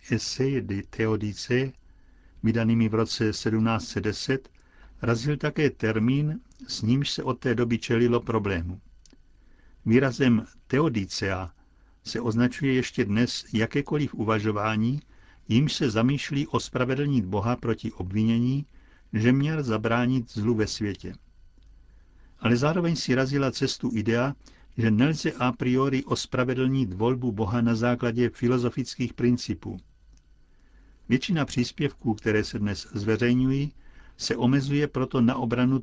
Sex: male